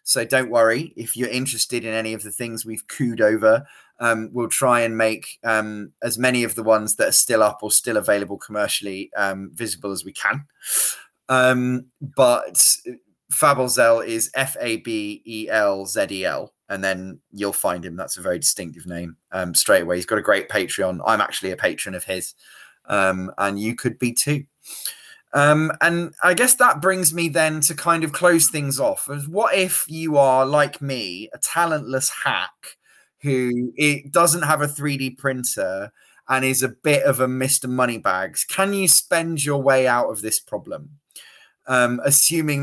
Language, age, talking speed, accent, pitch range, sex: English, 20-39, 175 wpm, British, 110-155 Hz, male